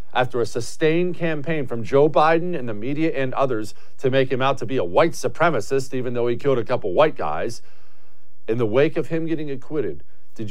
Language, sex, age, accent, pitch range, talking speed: English, male, 50-69, American, 105-145 Hz, 210 wpm